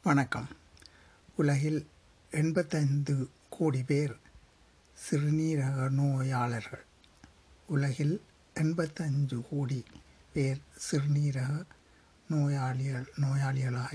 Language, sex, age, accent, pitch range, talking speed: Tamil, male, 60-79, native, 120-145 Hz, 60 wpm